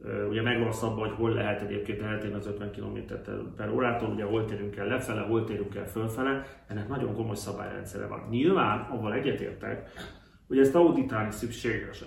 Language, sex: Hungarian, male